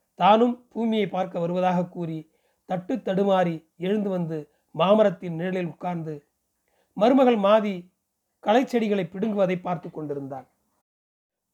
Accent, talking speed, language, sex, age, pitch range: native, 100 wpm, Tamil, male, 40-59, 165-210 Hz